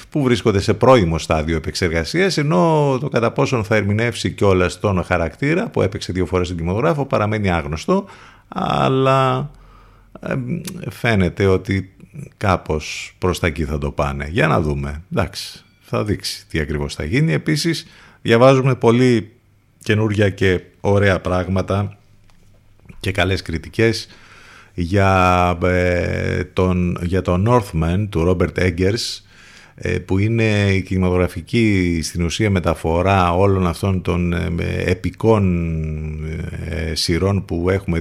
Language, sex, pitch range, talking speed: Greek, male, 85-105 Hz, 120 wpm